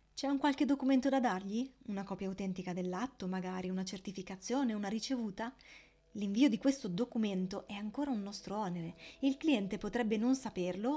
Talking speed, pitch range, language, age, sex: 160 wpm, 190-255 Hz, Italian, 20-39, female